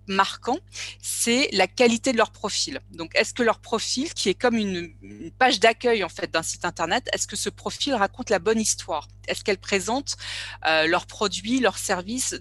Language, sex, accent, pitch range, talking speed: English, female, French, 180-235 Hz, 180 wpm